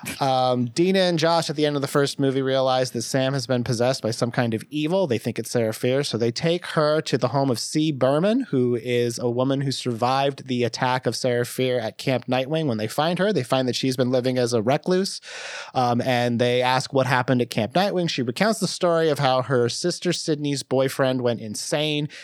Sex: male